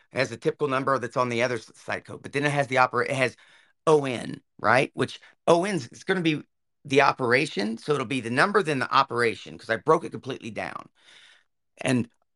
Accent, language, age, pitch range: American, English, 40-59, 125-170 Hz